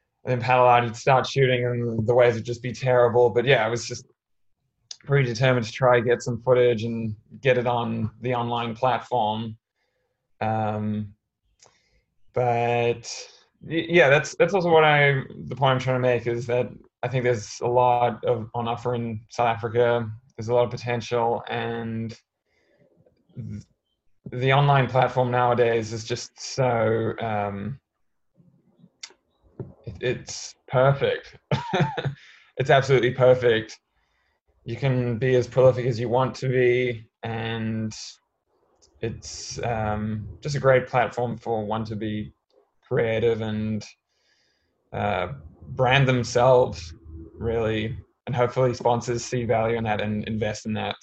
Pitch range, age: 110-125 Hz, 20-39